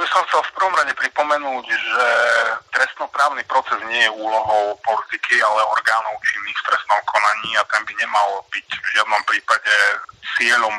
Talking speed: 165 wpm